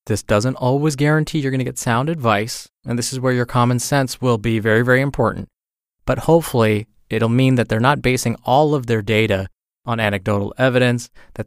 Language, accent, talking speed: English, American, 195 wpm